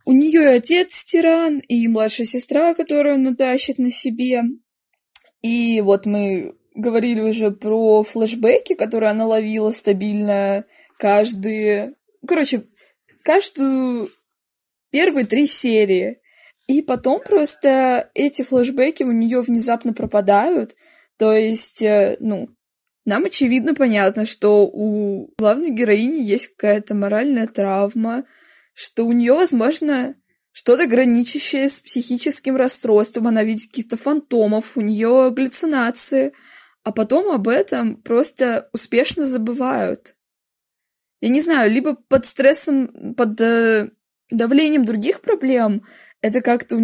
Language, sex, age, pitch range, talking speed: Russian, female, 20-39, 220-275 Hz, 115 wpm